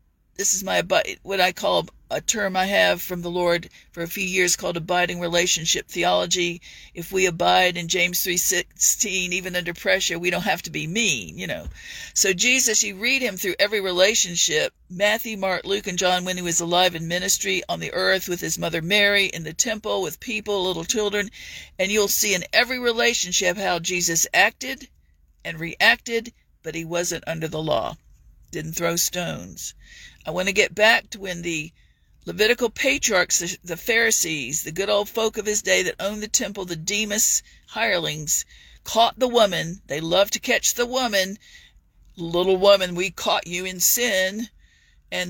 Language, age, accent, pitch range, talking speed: English, 50-69, American, 175-215 Hz, 180 wpm